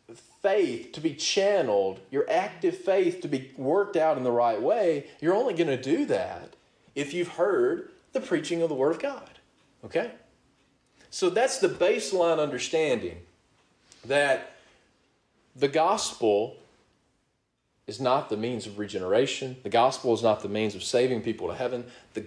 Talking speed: 155 wpm